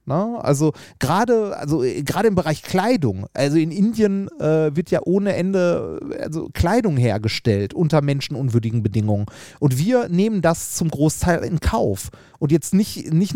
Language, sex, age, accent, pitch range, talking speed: German, male, 30-49, German, 140-190 Hz, 155 wpm